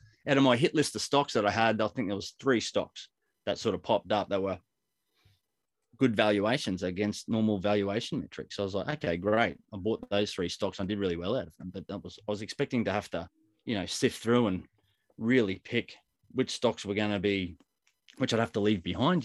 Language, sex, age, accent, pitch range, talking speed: English, male, 20-39, Australian, 95-115 Hz, 235 wpm